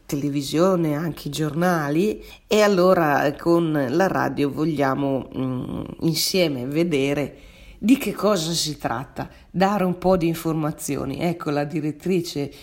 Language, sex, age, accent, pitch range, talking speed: Italian, female, 40-59, native, 140-170 Hz, 125 wpm